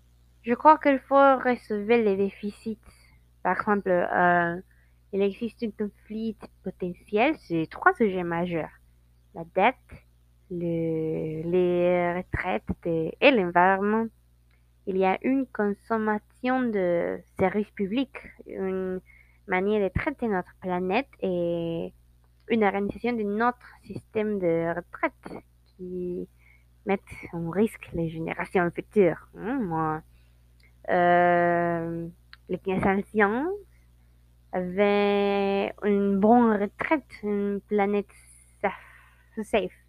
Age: 20-39